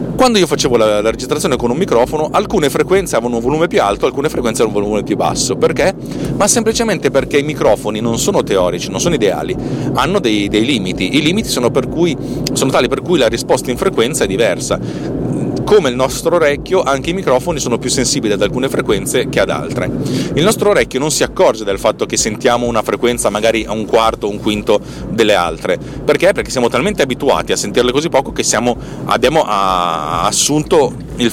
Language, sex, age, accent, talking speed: Italian, male, 40-59, native, 195 wpm